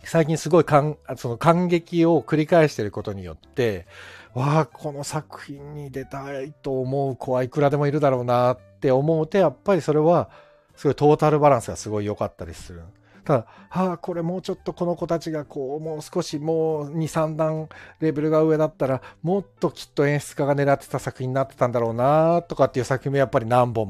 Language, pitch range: Japanese, 100-155 Hz